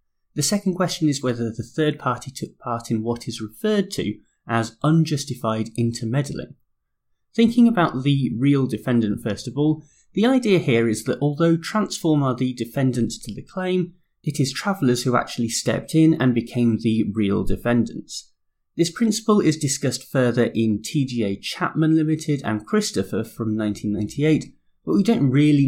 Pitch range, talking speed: 115-160 Hz, 160 wpm